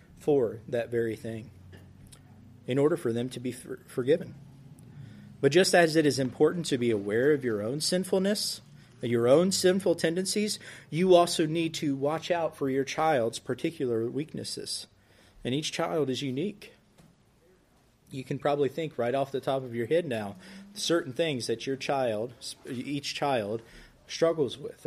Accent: American